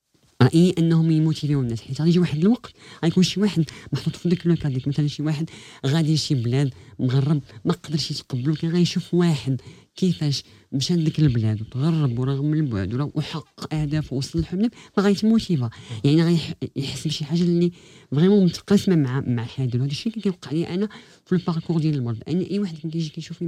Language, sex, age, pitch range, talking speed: Arabic, female, 40-59, 135-175 Hz, 170 wpm